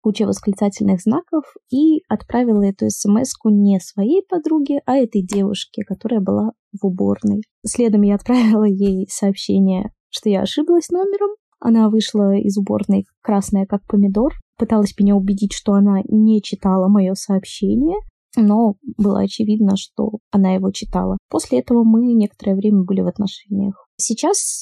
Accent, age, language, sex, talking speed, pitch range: native, 20-39, Russian, female, 140 wpm, 195-245 Hz